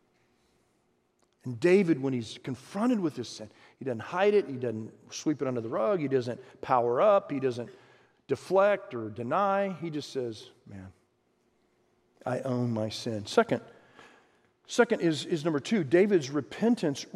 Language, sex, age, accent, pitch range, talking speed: English, male, 50-69, American, 135-195 Hz, 155 wpm